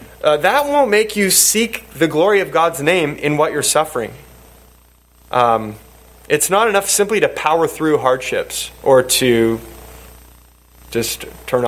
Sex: male